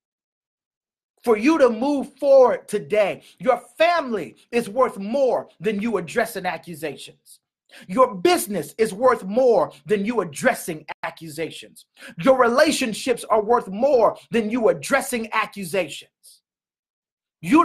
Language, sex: English, male